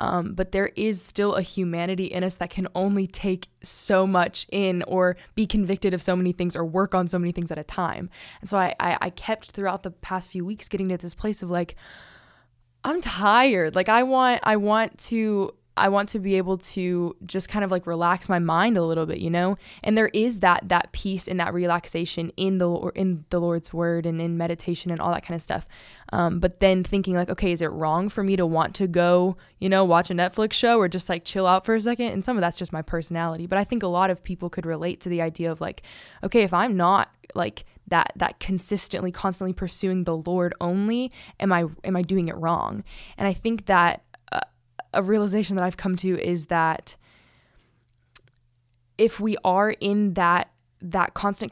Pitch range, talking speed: 175-200 Hz, 220 wpm